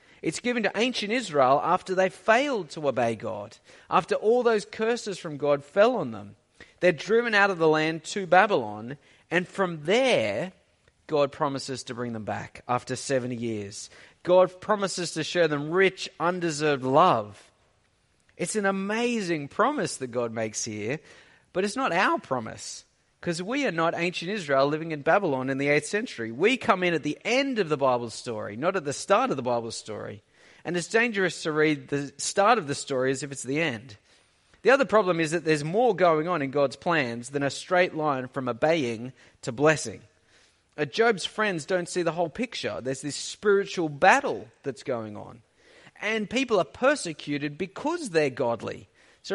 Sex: male